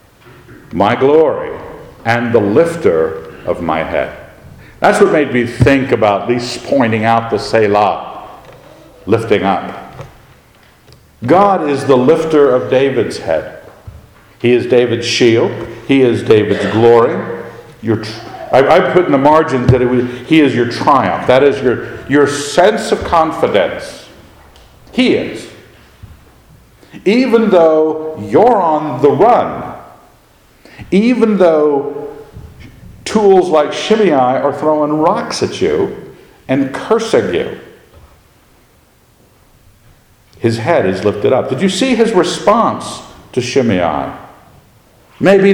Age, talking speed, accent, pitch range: 50-69, 115 wpm, American, 120-180 Hz